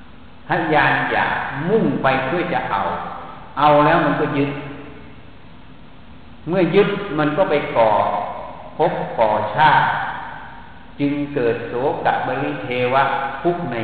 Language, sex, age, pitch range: Thai, male, 60-79, 135-165 Hz